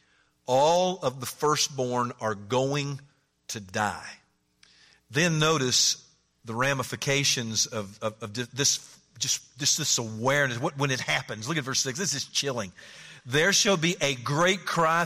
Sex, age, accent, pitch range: male, 50-69, American, 125-170 Hz